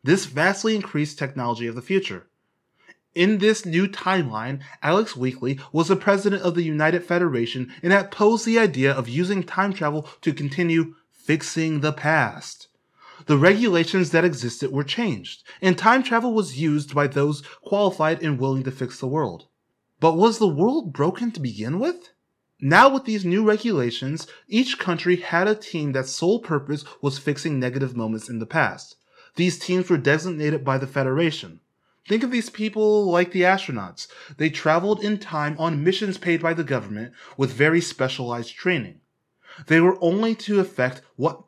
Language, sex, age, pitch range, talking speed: English, male, 20-39, 135-190 Hz, 170 wpm